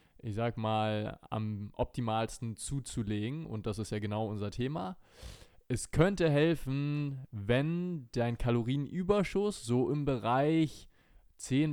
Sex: male